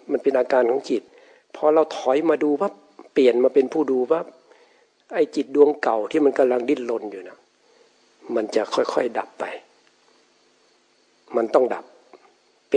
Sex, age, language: male, 60-79, Thai